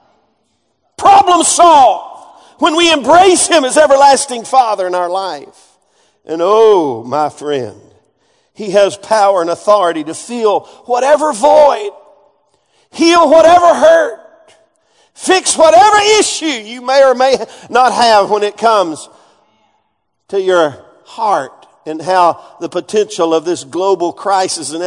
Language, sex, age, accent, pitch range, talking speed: English, male, 50-69, American, 160-260 Hz, 125 wpm